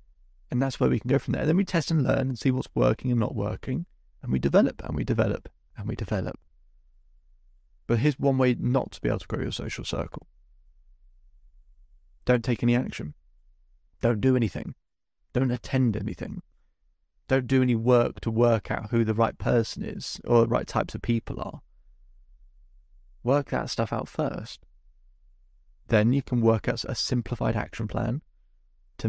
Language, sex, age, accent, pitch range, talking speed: English, male, 30-49, British, 85-120 Hz, 175 wpm